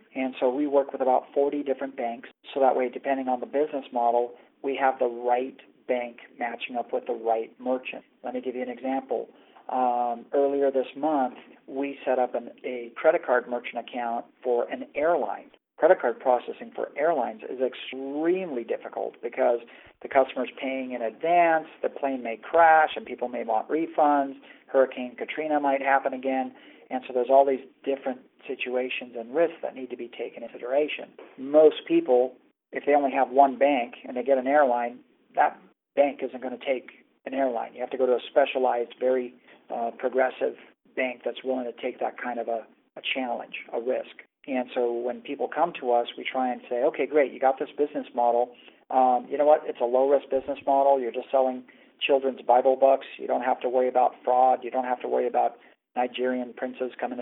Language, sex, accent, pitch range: English, male, American, 125-140 Hz